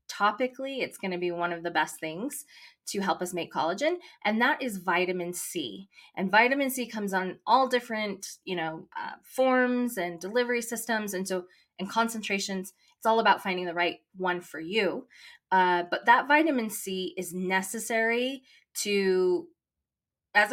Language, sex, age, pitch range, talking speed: English, female, 20-39, 185-245 Hz, 165 wpm